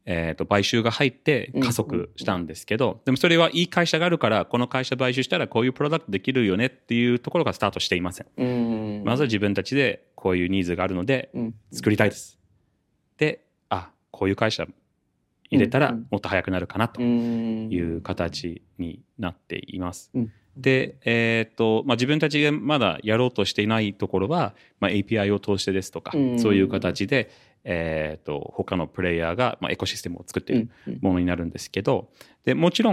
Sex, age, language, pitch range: male, 30-49, Japanese, 95-125 Hz